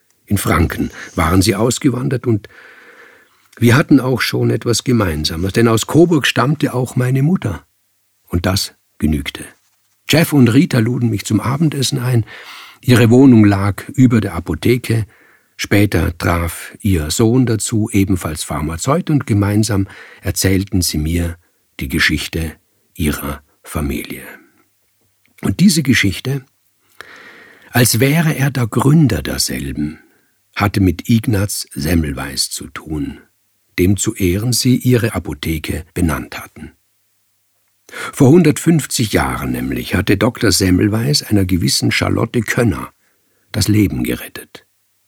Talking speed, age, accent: 120 wpm, 50-69, German